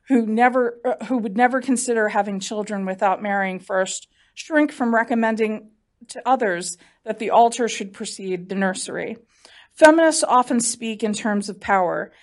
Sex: female